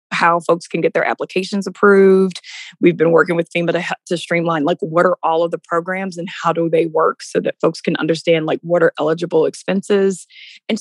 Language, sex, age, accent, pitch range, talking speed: English, female, 20-39, American, 170-195 Hz, 210 wpm